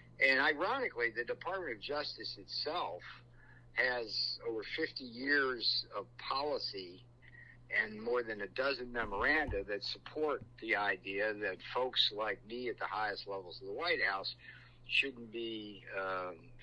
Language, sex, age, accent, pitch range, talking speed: English, male, 60-79, American, 110-135 Hz, 135 wpm